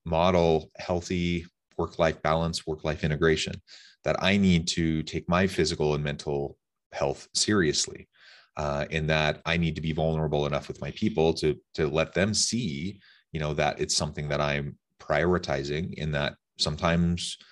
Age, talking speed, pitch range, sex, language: 30-49, 155 wpm, 75-90 Hz, male, English